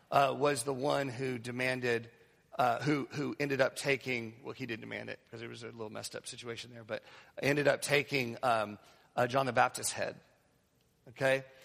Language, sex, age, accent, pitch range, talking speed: English, male, 40-59, American, 120-145 Hz, 190 wpm